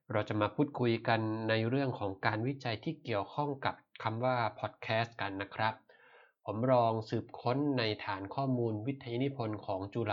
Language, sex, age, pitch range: Thai, male, 20-39, 100-120 Hz